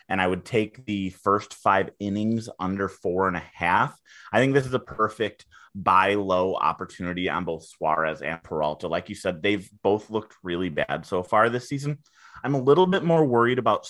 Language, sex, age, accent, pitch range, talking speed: English, male, 30-49, American, 90-120 Hz, 200 wpm